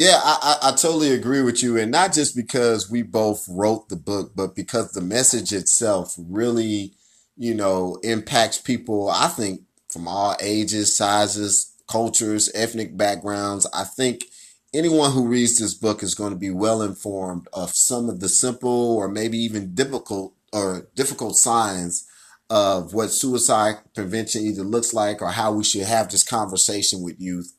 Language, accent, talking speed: English, American, 165 wpm